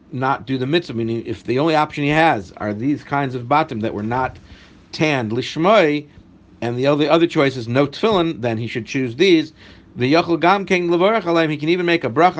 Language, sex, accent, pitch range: English, male, American, 115-160 Hz